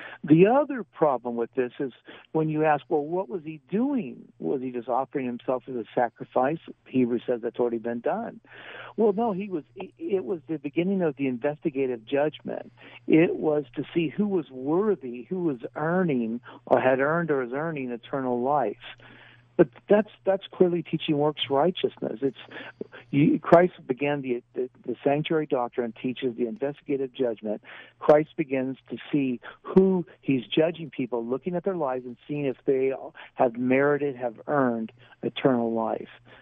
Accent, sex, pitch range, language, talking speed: American, male, 120-160 Hz, English, 165 wpm